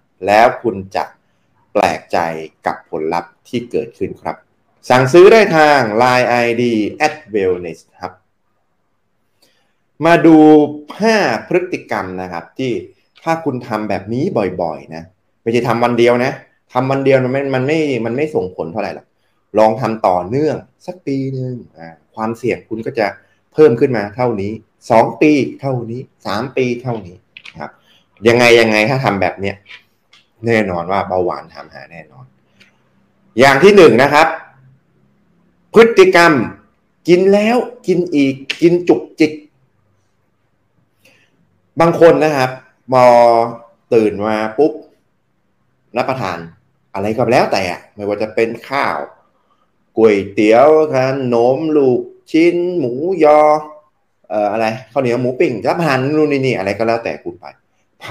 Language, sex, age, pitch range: Thai, male, 20-39, 110-155 Hz